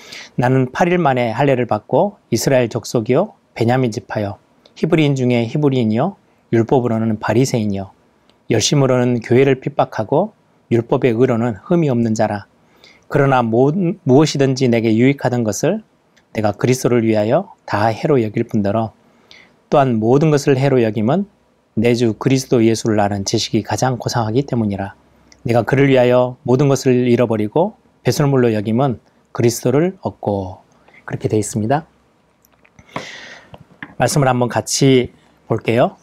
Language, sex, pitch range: Korean, male, 110-140 Hz